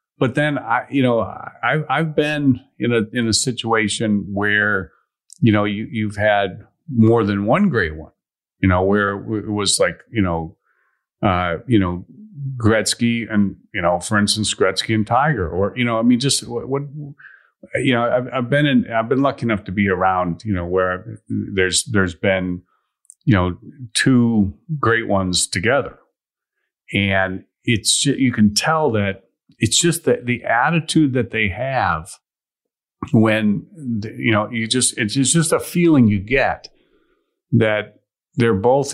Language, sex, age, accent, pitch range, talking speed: English, male, 40-59, American, 100-125 Hz, 160 wpm